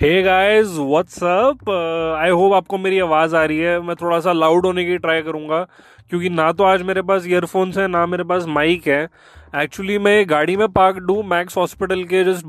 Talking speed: 200 wpm